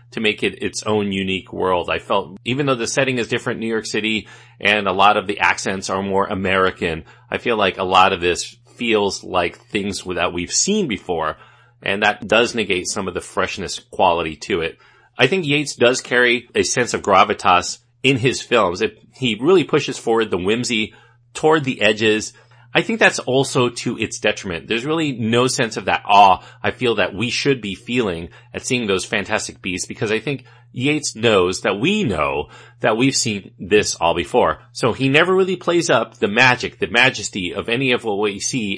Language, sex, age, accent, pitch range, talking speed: English, male, 30-49, American, 95-125 Hz, 200 wpm